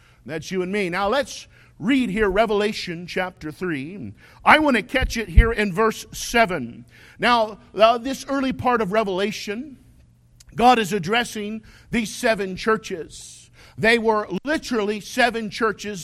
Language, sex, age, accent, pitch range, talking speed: English, male, 50-69, American, 195-245 Hz, 140 wpm